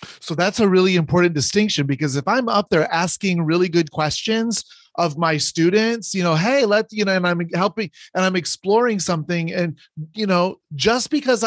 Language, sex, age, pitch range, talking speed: English, male, 30-49, 155-200 Hz, 190 wpm